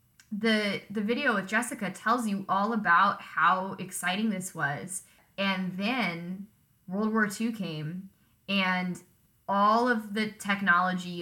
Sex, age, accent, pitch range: female, 10-29, American, 175-210 Hz